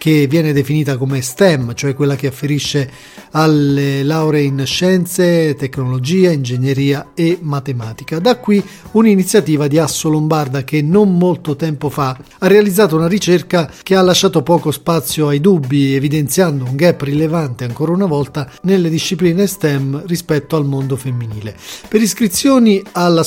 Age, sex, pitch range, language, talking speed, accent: 40-59, male, 140-180 Hz, Italian, 145 wpm, native